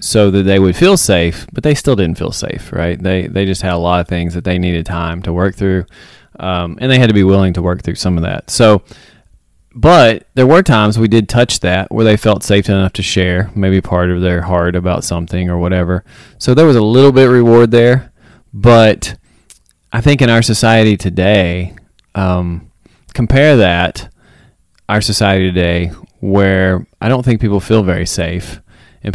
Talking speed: 200 wpm